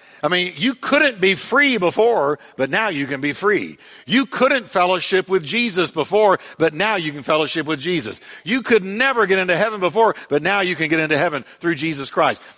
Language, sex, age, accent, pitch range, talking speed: English, male, 50-69, American, 165-225 Hz, 205 wpm